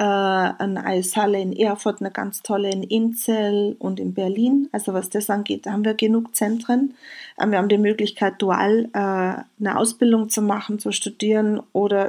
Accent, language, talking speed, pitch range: German, German, 165 wpm, 195-225 Hz